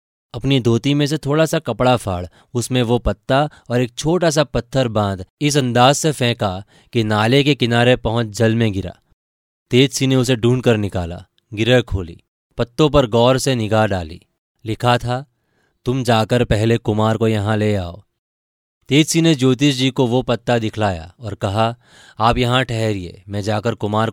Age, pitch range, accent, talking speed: 20-39, 100-125 Hz, native, 175 wpm